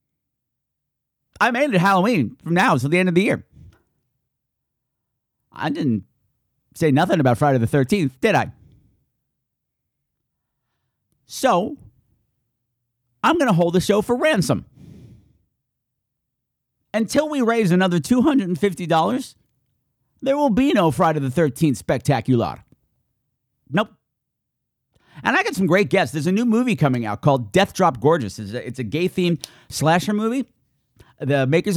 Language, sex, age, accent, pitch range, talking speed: English, male, 50-69, American, 125-185 Hz, 130 wpm